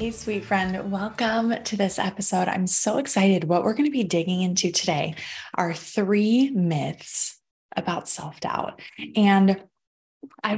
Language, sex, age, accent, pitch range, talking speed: English, female, 20-39, American, 180-225 Hz, 140 wpm